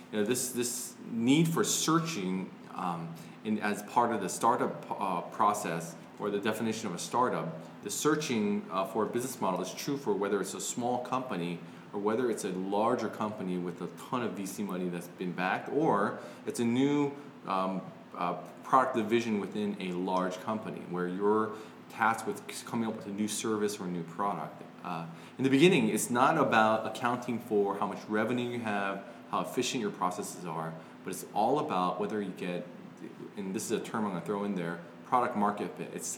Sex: male